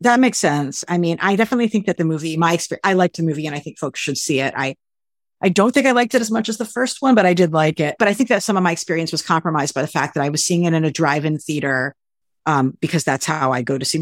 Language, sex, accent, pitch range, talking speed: English, female, American, 140-185 Hz, 310 wpm